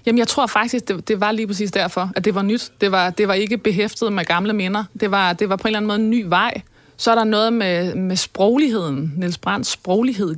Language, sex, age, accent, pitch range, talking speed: Danish, female, 20-39, native, 180-225 Hz, 260 wpm